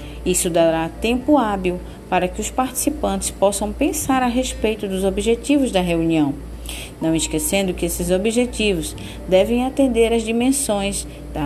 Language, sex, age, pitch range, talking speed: Portuguese, female, 40-59, 155-240 Hz, 135 wpm